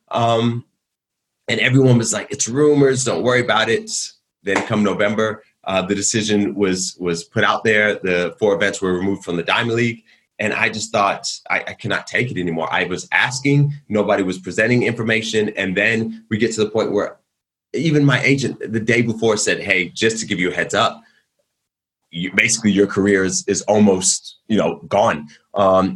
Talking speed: 190 wpm